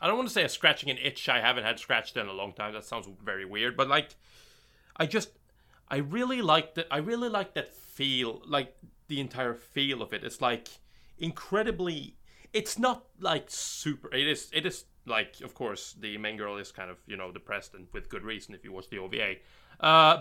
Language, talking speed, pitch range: English, 215 wpm, 115-170 Hz